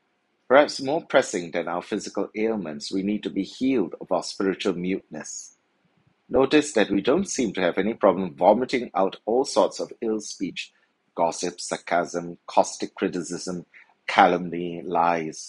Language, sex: English, male